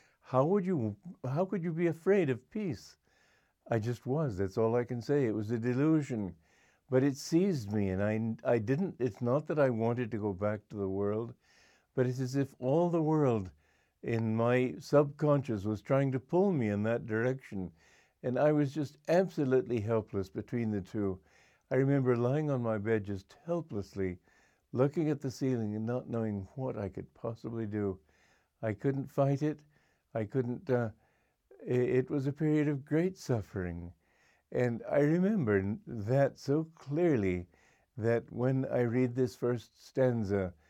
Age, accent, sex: 60-79, American, male